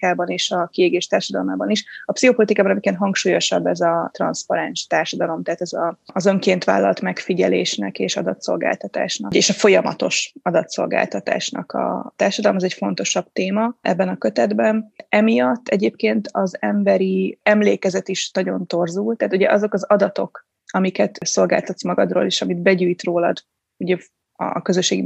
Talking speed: 140 wpm